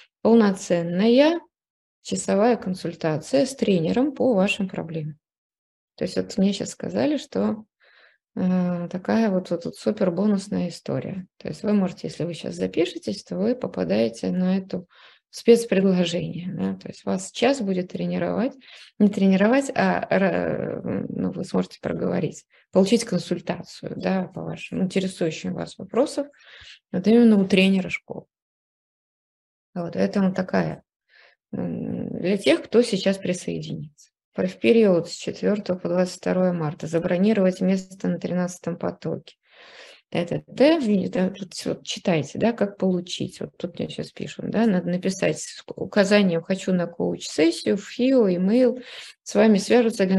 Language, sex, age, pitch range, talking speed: Russian, female, 20-39, 175-220 Hz, 125 wpm